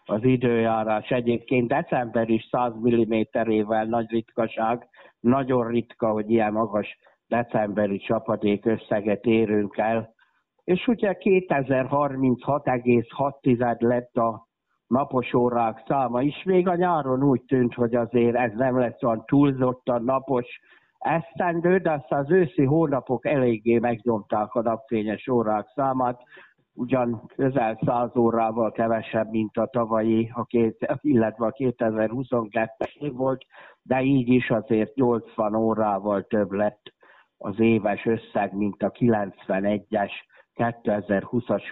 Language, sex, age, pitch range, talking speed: Hungarian, male, 60-79, 110-130 Hz, 120 wpm